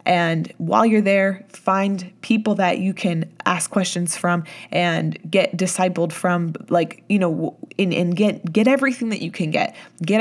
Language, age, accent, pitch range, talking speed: English, 20-39, American, 175-210 Hz, 170 wpm